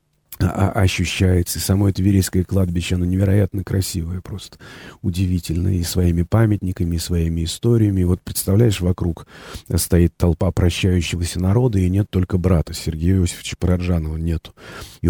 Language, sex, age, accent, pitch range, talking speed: Russian, male, 40-59, native, 90-105 Hz, 130 wpm